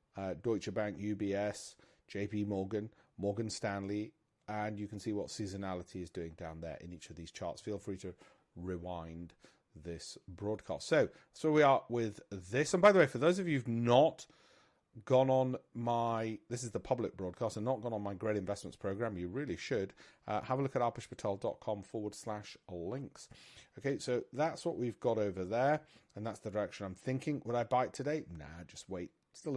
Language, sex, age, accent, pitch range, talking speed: English, male, 40-59, British, 100-130 Hz, 195 wpm